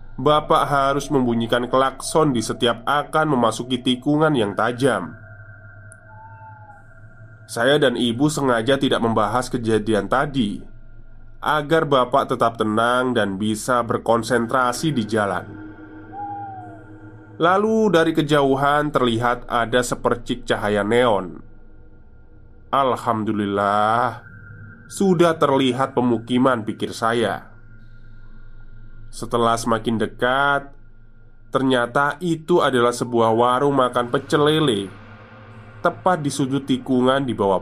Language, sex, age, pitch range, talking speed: Indonesian, male, 20-39, 110-135 Hz, 95 wpm